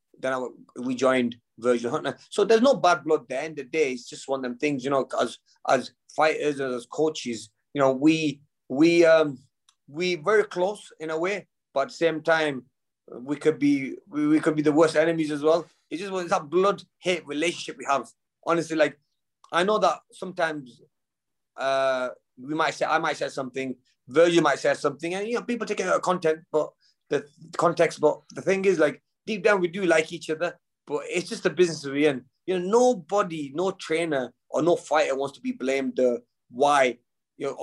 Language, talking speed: English, 210 wpm